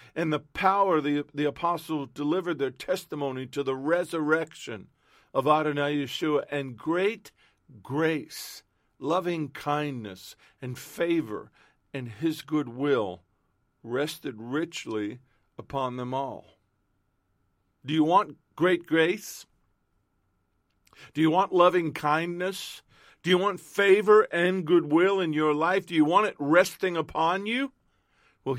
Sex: male